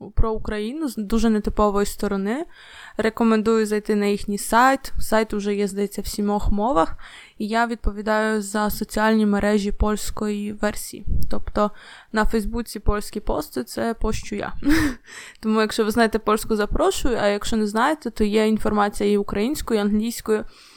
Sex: female